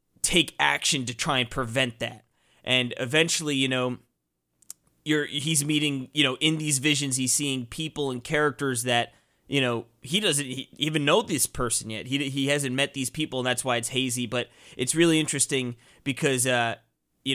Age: 20-39